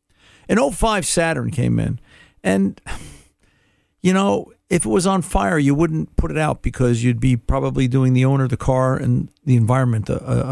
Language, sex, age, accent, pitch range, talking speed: English, male, 50-69, American, 120-150 Hz, 190 wpm